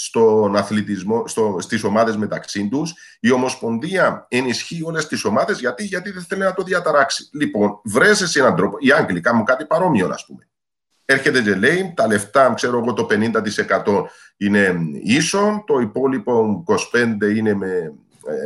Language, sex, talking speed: Greek, male, 160 wpm